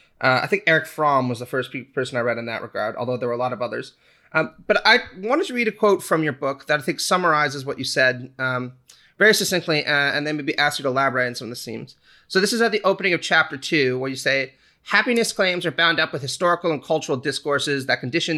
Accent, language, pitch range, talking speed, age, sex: American, English, 135-170 Hz, 260 wpm, 30-49, male